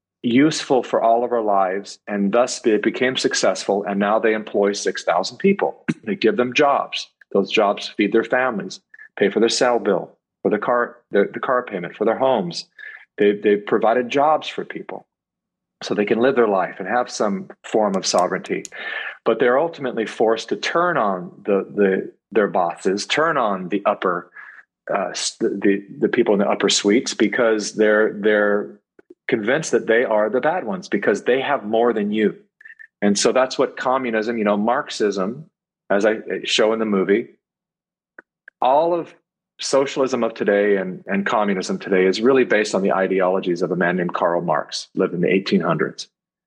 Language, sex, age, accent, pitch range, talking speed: English, male, 40-59, American, 100-130 Hz, 175 wpm